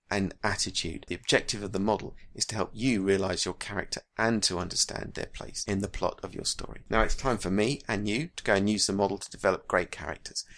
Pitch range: 95-115 Hz